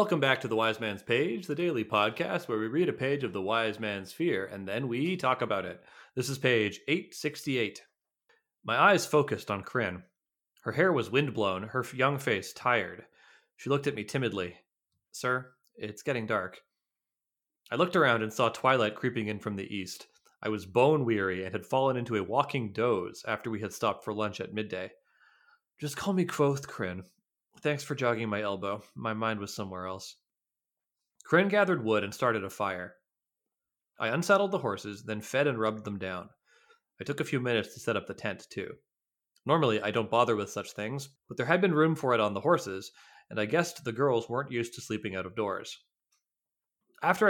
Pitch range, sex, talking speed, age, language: 105-140 Hz, male, 195 wpm, 30-49, English